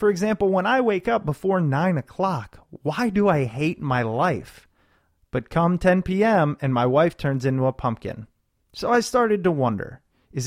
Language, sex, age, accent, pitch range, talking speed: English, male, 30-49, American, 125-195 Hz, 180 wpm